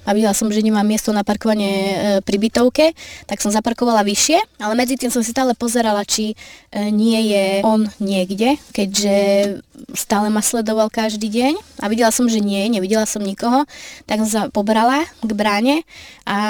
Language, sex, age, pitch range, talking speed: Slovak, female, 20-39, 205-235 Hz, 170 wpm